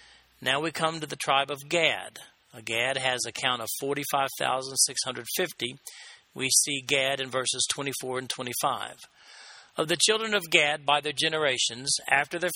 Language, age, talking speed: English, 50-69, 155 wpm